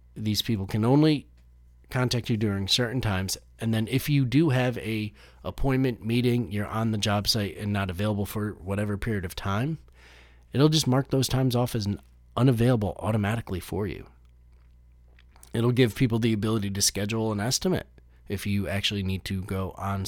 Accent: American